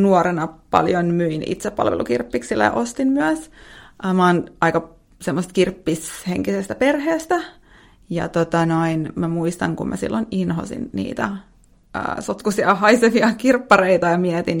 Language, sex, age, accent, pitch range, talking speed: Finnish, female, 30-49, native, 170-225 Hz, 120 wpm